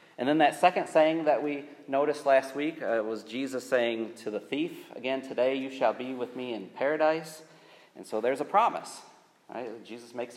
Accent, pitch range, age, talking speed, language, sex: American, 120-150 Hz, 40-59, 195 wpm, English, male